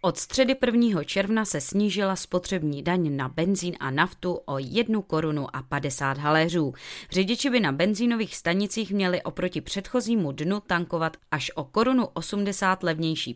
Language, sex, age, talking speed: Czech, female, 20-39, 150 wpm